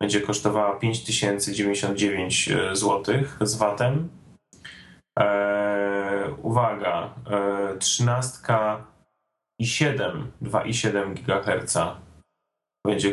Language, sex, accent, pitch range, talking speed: Polish, male, native, 100-115 Hz, 80 wpm